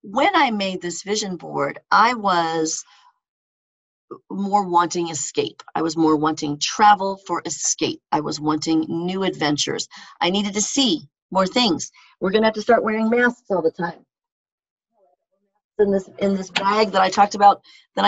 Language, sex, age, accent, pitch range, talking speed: English, female, 40-59, American, 175-245 Hz, 165 wpm